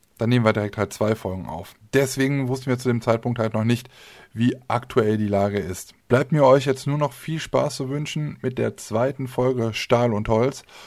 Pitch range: 110-130 Hz